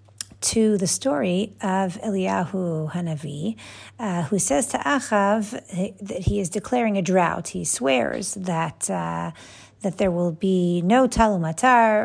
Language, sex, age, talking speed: English, female, 50-69, 135 wpm